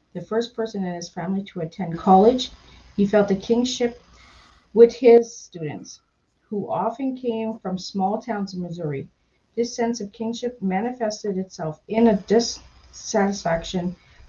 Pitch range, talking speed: 185-225 Hz, 140 wpm